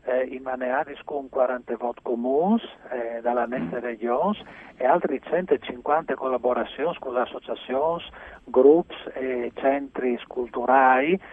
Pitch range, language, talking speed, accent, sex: 120-135 Hz, Italian, 115 wpm, native, male